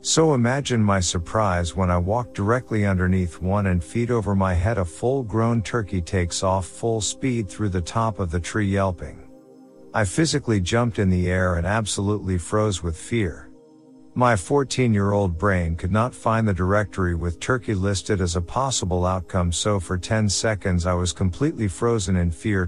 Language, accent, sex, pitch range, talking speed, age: English, American, male, 90-110 Hz, 170 wpm, 50-69